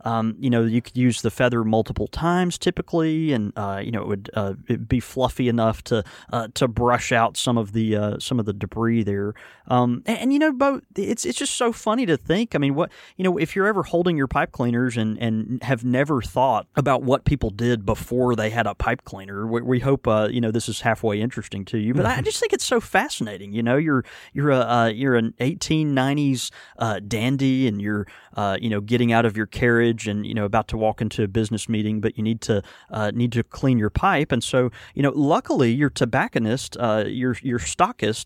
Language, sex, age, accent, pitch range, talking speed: English, male, 30-49, American, 110-135 Hz, 230 wpm